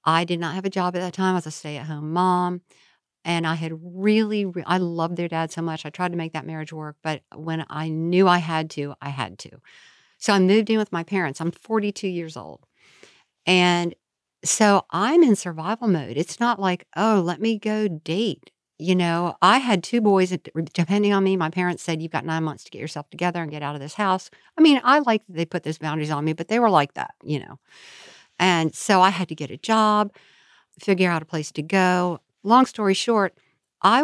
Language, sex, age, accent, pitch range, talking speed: English, female, 60-79, American, 160-195 Hz, 225 wpm